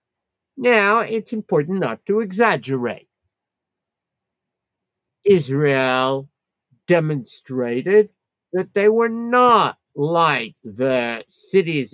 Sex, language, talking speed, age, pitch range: male, English, 75 wpm, 50-69, 130-210 Hz